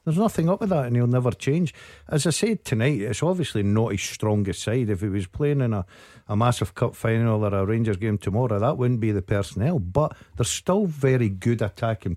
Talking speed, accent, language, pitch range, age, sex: 220 wpm, British, English, 115-150 Hz, 50-69, male